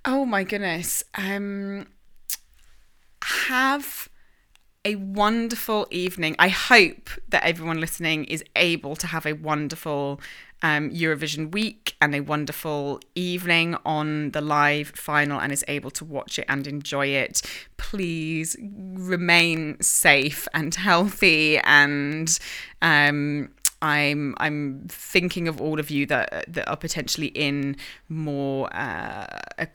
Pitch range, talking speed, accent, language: 140-175 Hz, 125 wpm, British, English